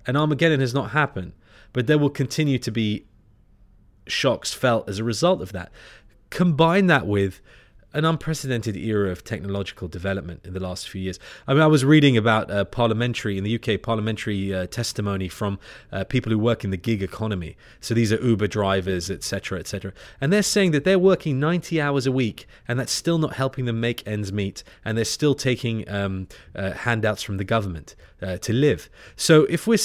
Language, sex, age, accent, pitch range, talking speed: English, male, 20-39, British, 100-135 Hz, 195 wpm